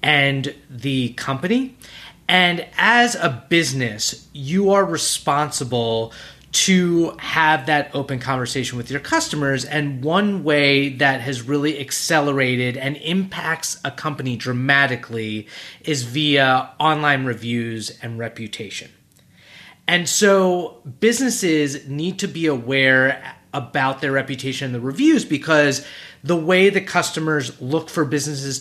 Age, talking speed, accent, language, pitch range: 30-49, 120 wpm, American, English, 135-160 Hz